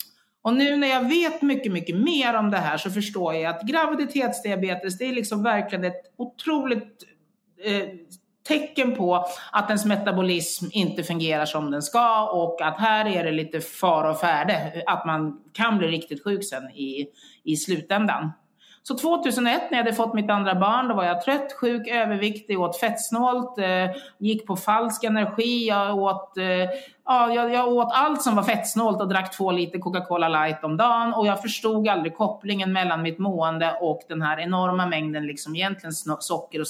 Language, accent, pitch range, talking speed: English, Swedish, 165-230 Hz, 180 wpm